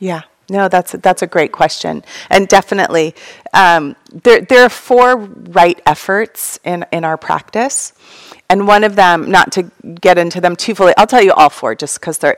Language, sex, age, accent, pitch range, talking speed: English, female, 30-49, American, 160-210 Hz, 195 wpm